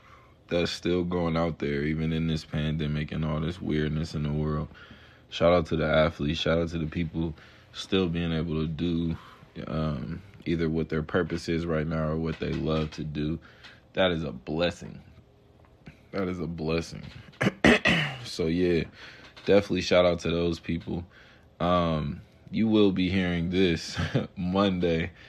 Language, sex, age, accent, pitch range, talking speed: English, male, 20-39, American, 80-85 Hz, 160 wpm